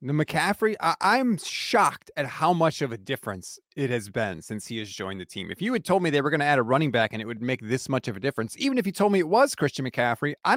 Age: 30-49